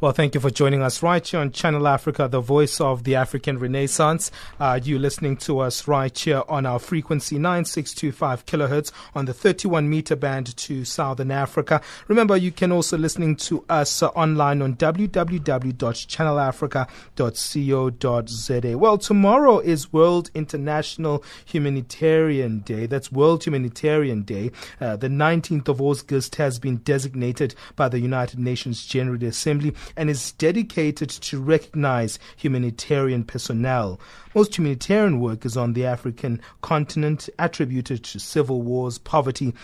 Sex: male